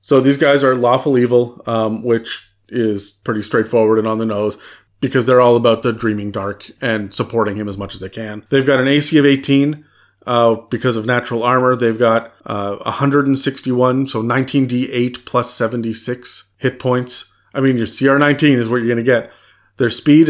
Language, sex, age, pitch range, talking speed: English, male, 40-59, 110-130 Hz, 190 wpm